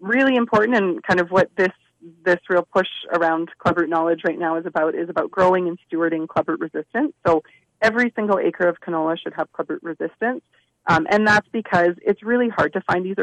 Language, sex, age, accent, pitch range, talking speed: English, female, 30-49, American, 165-210 Hz, 200 wpm